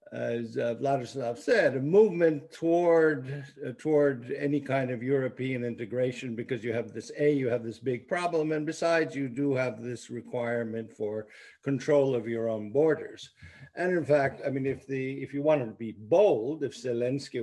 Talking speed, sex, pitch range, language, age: 185 wpm, male, 120-160 Hz, English, 50-69